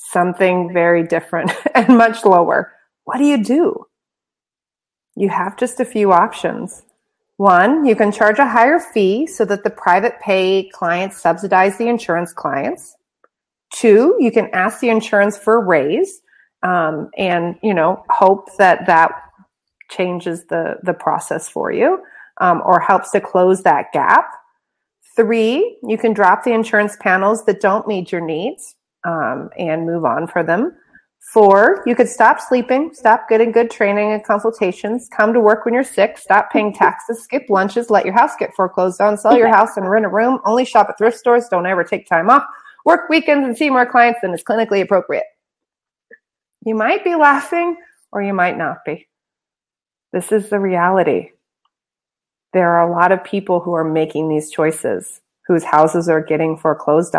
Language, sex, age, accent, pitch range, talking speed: English, female, 30-49, American, 180-245 Hz, 170 wpm